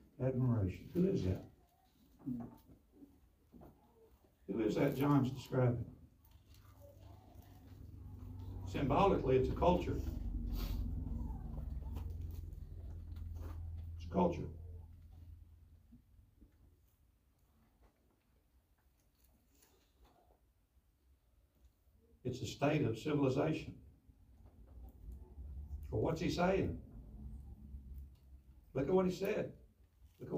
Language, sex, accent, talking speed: English, male, American, 65 wpm